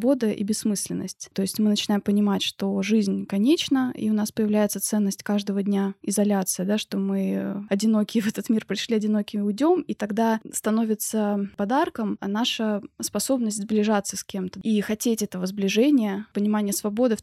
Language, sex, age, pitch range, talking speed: Russian, female, 20-39, 200-230 Hz, 155 wpm